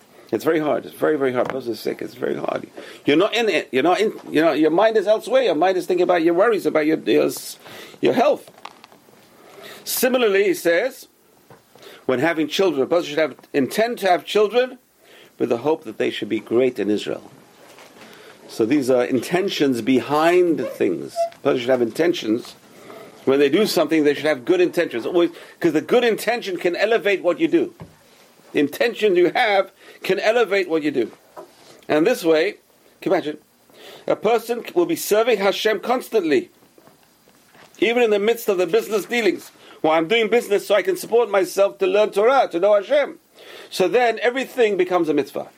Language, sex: English, male